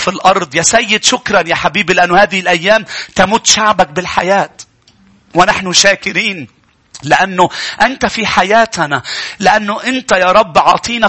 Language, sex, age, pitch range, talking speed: English, male, 40-59, 210-255 Hz, 130 wpm